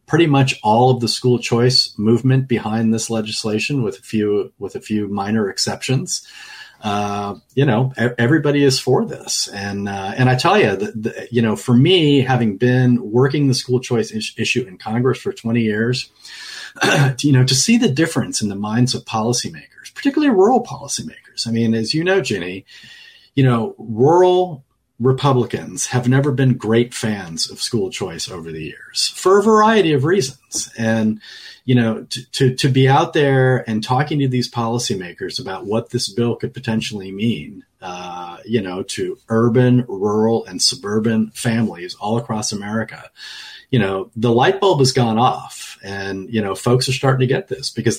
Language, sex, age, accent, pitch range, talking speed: English, male, 40-59, American, 110-130 Hz, 180 wpm